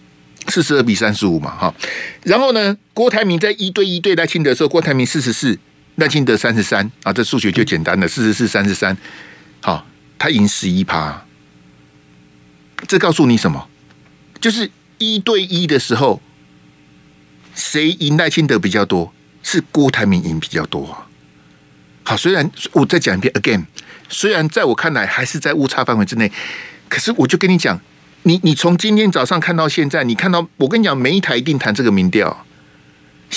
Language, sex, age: Chinese, male, 50-69